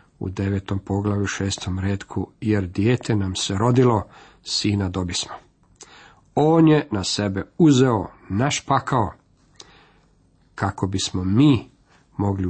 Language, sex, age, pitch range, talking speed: Croatian, male, 50-69, 100-140 Hz, 105 wpm